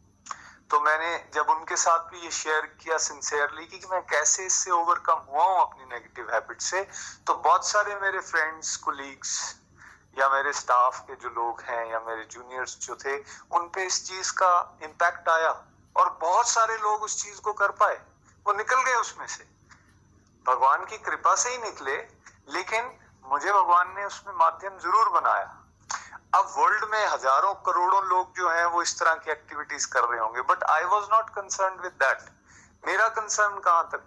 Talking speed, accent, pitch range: 175 wpm, native, 155-200 Hz